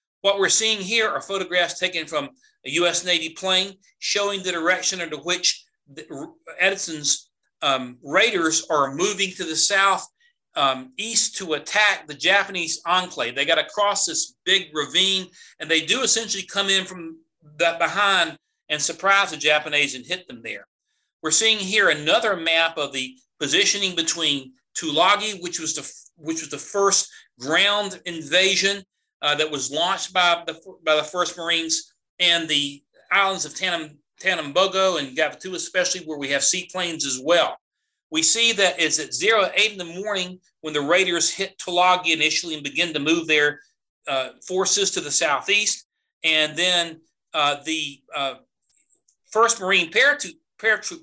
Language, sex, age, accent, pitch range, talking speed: English, male, 40-59, American, 155-200 Hz, 160 wpm